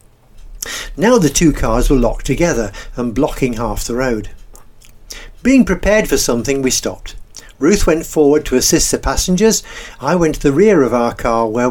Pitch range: 115-155 Hz